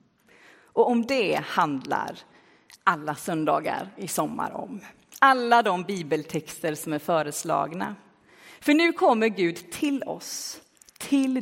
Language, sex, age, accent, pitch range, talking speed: Swedish, female, 30-49, native, 195-275 Hz, 115 wpm